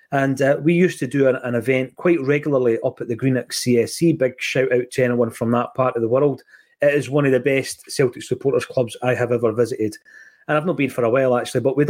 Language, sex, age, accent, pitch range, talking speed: English, male, 30-49, British, 120-155 Hz, 250 wpm